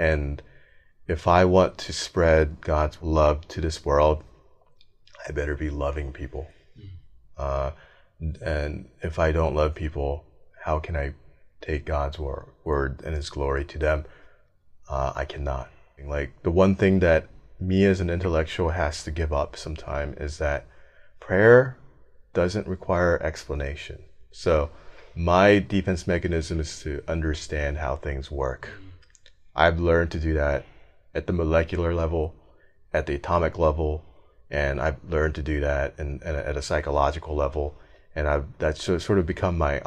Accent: American